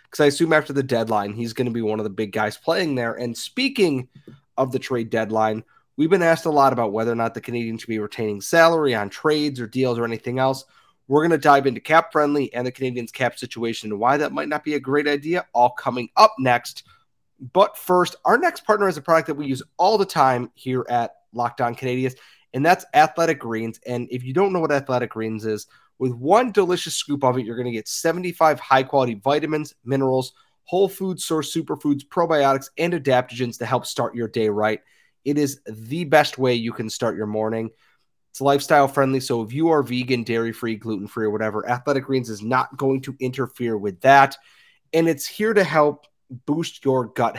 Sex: male